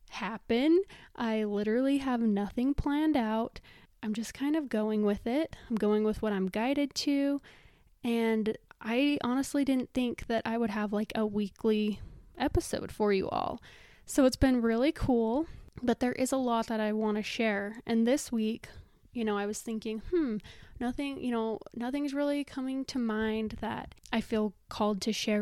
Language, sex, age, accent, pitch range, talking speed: English, female, 20-39, American, 210-245 Hz, 175 wpm